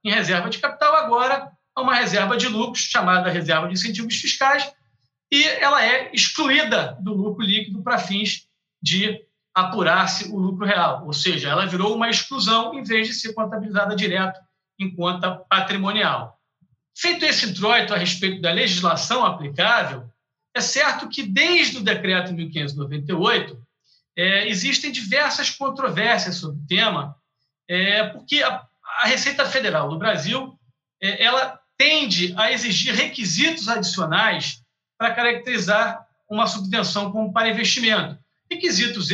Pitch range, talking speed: 180-245 Hz, 135 wpm